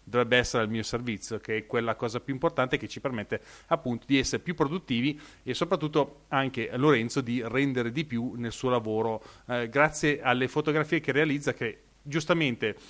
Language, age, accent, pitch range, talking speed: Italian, 30-49, native, 120-150 Hz, 175 wpm